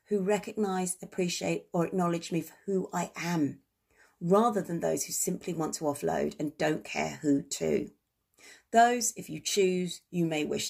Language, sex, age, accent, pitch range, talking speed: English, female, 40-59, British, 185-265 Hz, 170 wpm